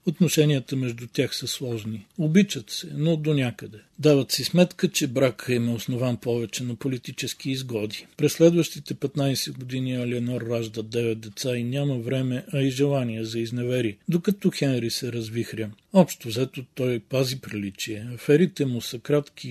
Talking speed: 155 wpm